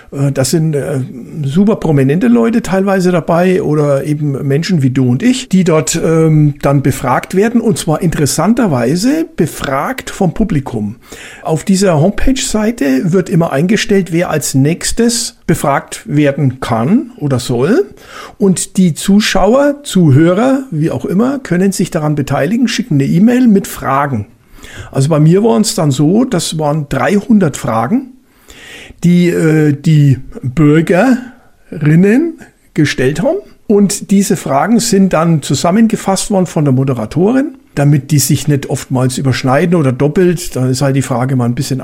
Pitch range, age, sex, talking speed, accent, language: 140-200 Hz, 60-79, male, 140 wpm, German, German